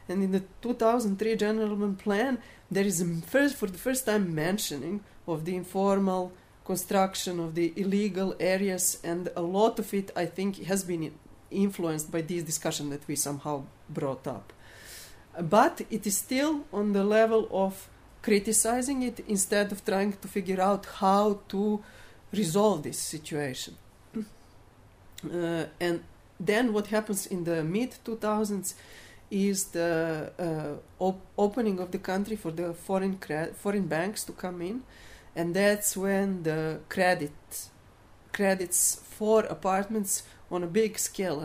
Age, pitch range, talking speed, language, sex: 40-59, 160-205 Hz, 140 wpm, English, female